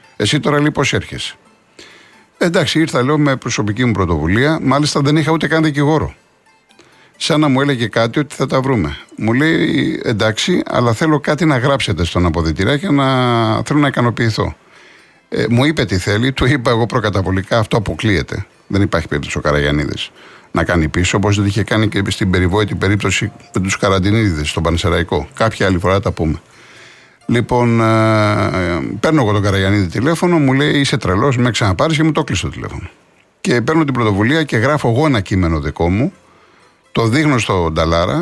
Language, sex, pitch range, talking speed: Greek, male, 95-145 Hz, 175 wpm